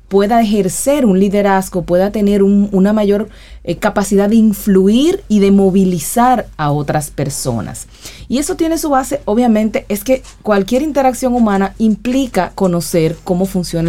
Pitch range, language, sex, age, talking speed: 170-220 Hz, Spanish, female, 30-49, 145 wpm